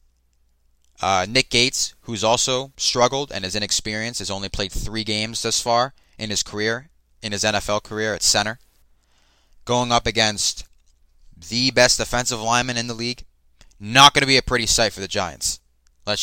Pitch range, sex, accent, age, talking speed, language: 90-120 Hz, male, American, 20-39, 170 wpm, English